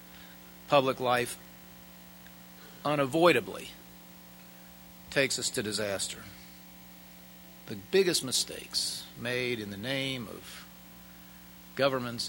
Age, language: 50-69, English